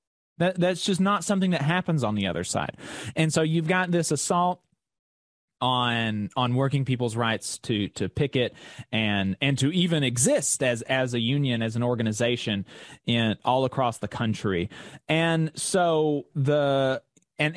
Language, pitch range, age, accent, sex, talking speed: English, 130-175 Hz, 30-49, American, male, 155 wpm